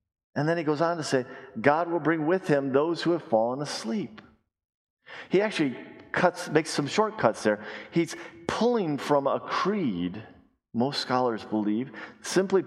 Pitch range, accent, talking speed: 105-165 Hz, American, 155 wpm